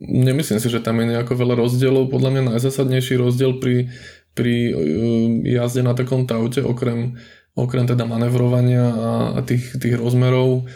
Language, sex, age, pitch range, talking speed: Slovak, male, 20-39, 115-125 Hz, 150 wpm